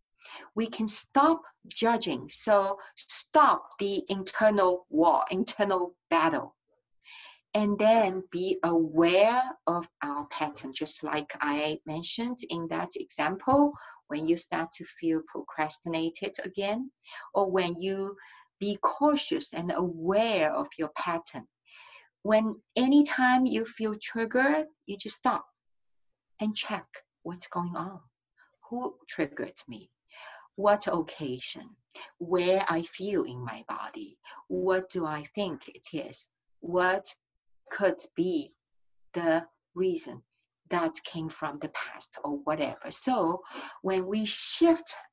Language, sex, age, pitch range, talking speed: English, female, 50-69, 165-225 Hz, 120 wpm